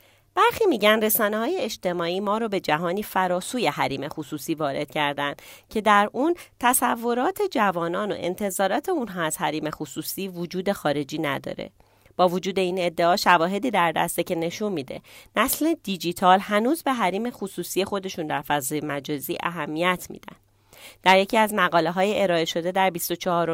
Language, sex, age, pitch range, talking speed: Persian, female, 30-49, 165-200 Hz, 150 wpm